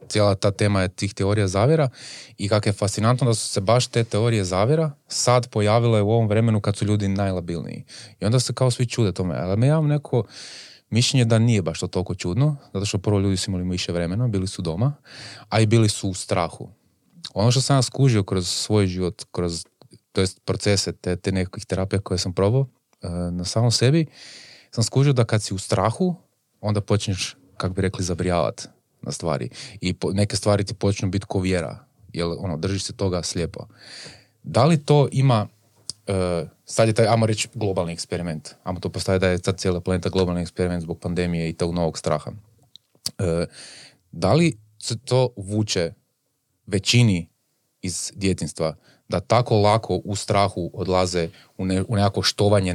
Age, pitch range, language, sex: 20-39, 90-115 Hz, Croatian, male